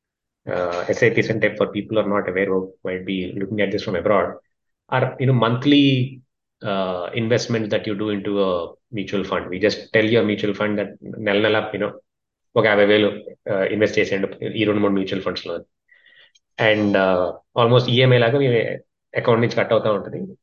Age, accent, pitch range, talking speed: 20-39, native, 100-125 Hz, 170 wpm